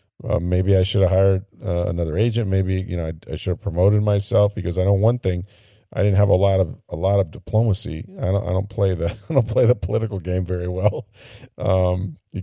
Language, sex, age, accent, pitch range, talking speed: English, male, 40-59, American, 90-105 Hz, 235 wpm